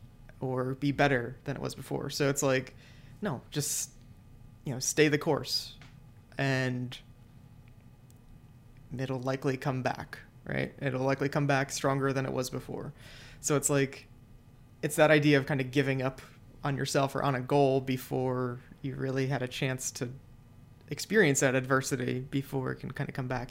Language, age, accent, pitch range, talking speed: English, 20-39, American, 125-140 Hz, 170 wpm